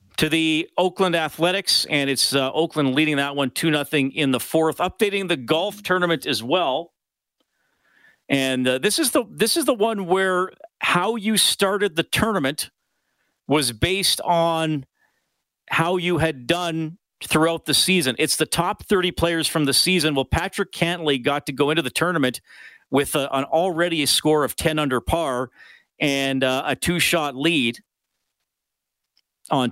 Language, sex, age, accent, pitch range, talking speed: English, male, 40-59, American, 130-175 Hz, 165 wpm